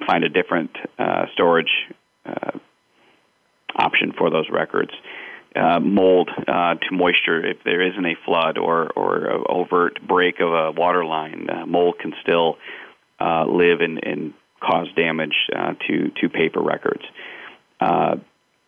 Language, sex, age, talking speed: English, male, 40-59, 140 wpm